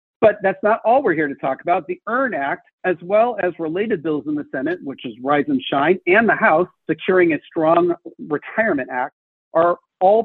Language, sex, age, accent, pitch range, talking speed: English, male, 50-69, American, 165-235 Hz, 205 wpm